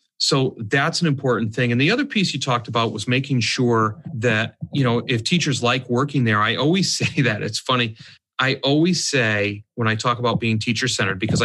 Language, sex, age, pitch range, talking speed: English, male, 40-59, 115-150 Hz, 210 wpm